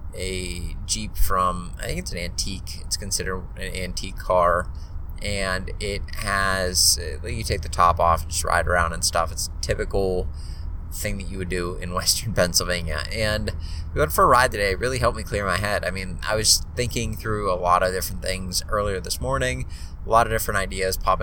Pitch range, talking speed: 85-100 Hz, 200 wpm